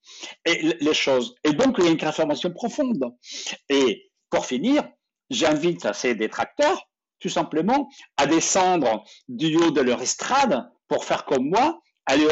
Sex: male